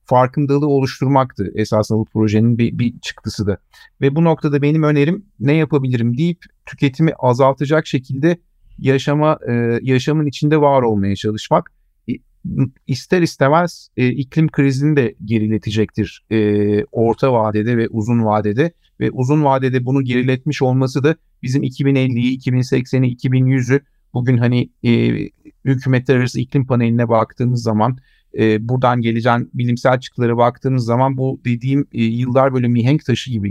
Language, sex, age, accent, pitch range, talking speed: Turkish, male, 50-69, native, 120-140 Hz, 130 wpm